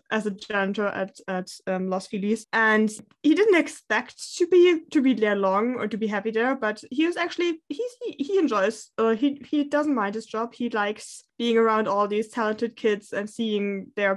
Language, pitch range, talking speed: English, 195-245 Hz, 205 wpm